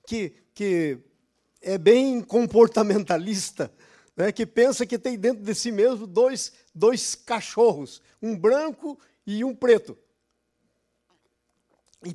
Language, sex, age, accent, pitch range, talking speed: Portuguese, male, 50-69, Brazilian, 190-235 Hz, 115 wpm